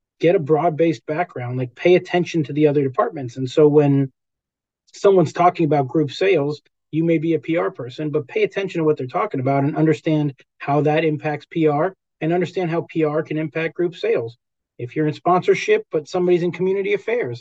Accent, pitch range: American, 145-175 Hz